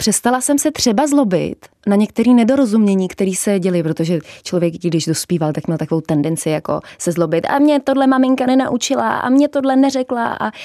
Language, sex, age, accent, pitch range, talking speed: Czech, female, 20-39, native, 180-225 Hz, 180 wpm